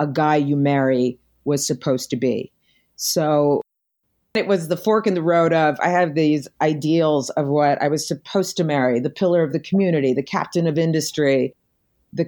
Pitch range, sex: 145-190 Hz, female